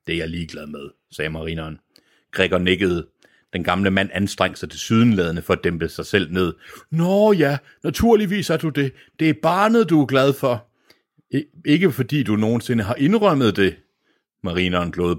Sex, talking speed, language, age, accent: male, 175 wpm, Danish, 60-79, native